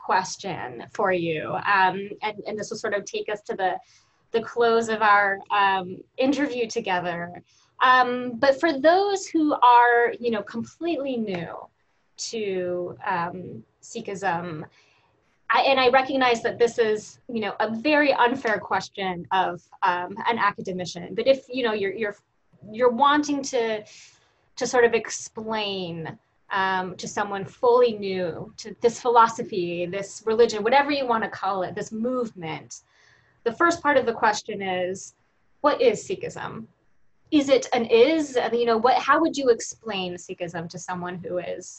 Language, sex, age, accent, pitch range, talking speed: English, female, 20-39, American, 190-260 Hz, 155 wpm